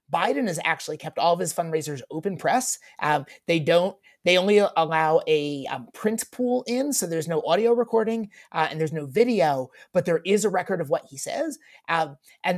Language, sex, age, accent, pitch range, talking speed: English, male, 30-49, American, 160-210 Hz, 200 wpm